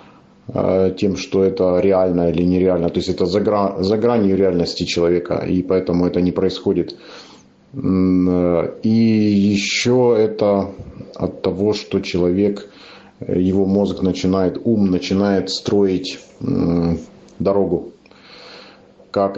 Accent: native